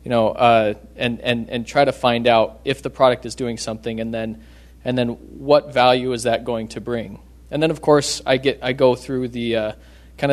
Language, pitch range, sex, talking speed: English, 115-135 Hz, male, 225 wpm